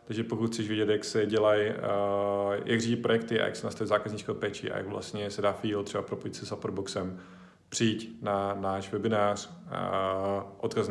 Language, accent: Czech, native